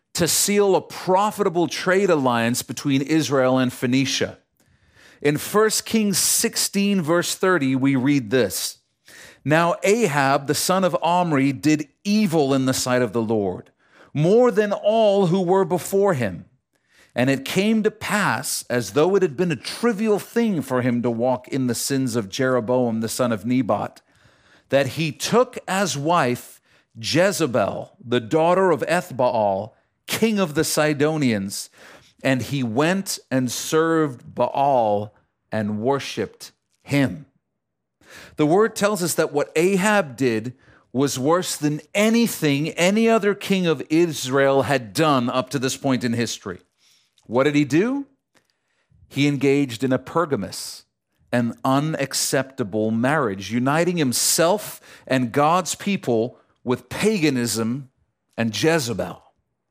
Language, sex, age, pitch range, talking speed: English, male, 40-59, 125-185 Hz, 135 wpm